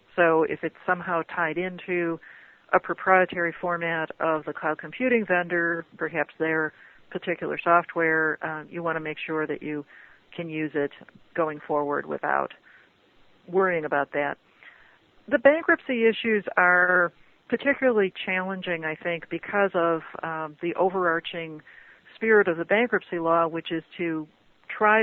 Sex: female